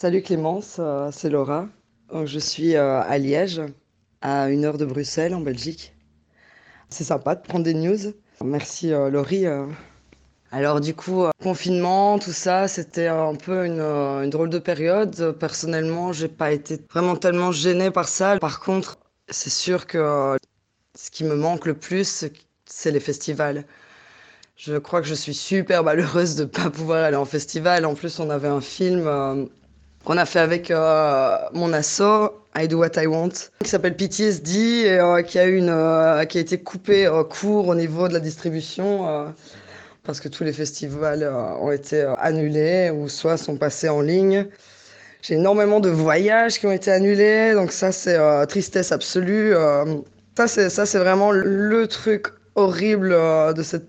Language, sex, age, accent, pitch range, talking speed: French, female, 20-39, French, 150-185 Hz, 170 wpm